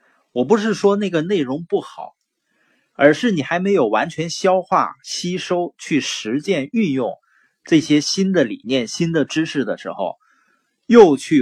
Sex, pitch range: male, 150-230 Hz